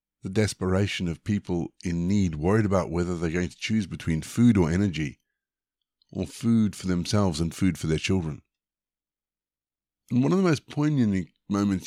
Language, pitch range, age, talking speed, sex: English, 90-115 Hz, 50-69, 165 wpm, male